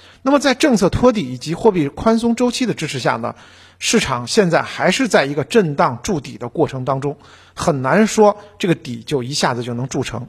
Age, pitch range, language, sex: 50-69, 130-205 Hz, Chinese, male